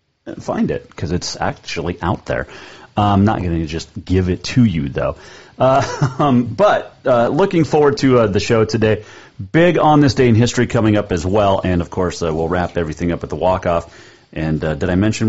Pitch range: 90-120 Hz